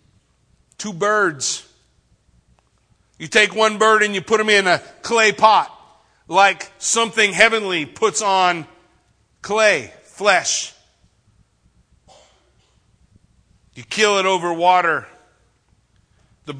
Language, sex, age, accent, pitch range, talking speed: English, male, 40-59, American, 170-210 Hz, 100 wpm